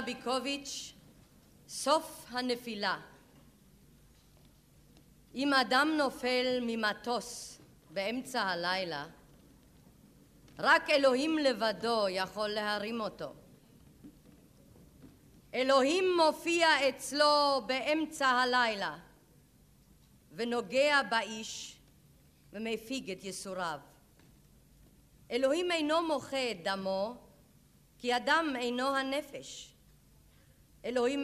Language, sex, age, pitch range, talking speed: Hebrew, female, 50-69, 225-280 Hz, 45 wpm